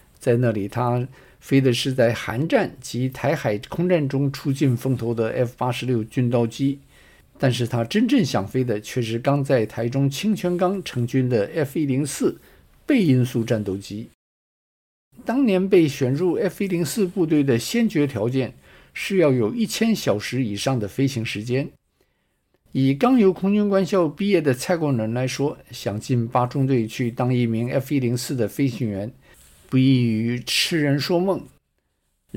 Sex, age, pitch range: male, 50-69, 115-150 Hz